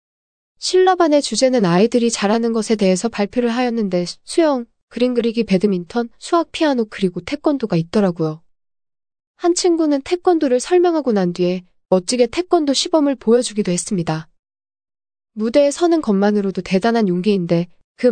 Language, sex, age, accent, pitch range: Korean, female, 20-39, native, 180-250 Hz